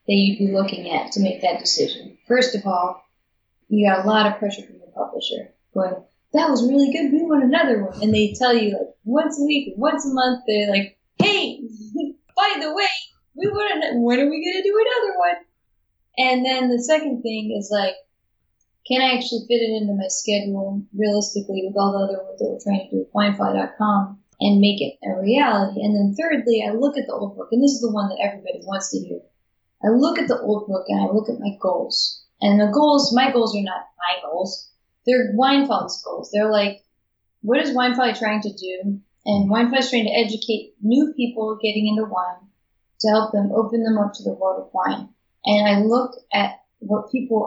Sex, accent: female, American